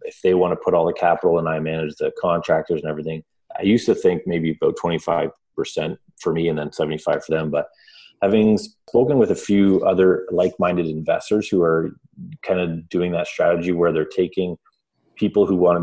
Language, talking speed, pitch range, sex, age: English, 195 wpm, 80-100 Hz, male, 30-49